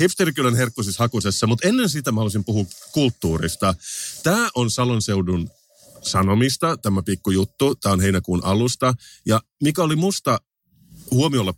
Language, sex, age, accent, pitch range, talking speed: Finnish, male, 30-49, native, 90-120 Hz, 130 wpm